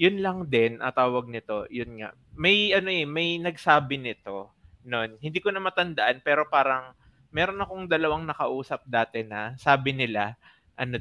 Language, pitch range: Filipino, 115-150 Hz